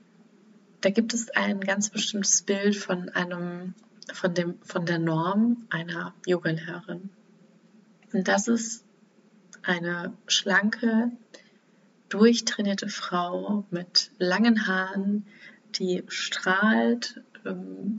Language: German